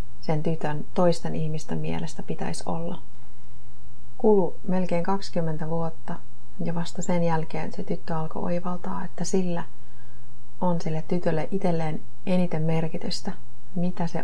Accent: native